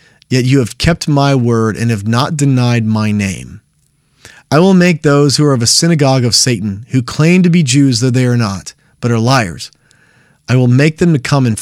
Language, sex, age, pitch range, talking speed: English, male, 30-49, 120-160 Hz, 215 wpm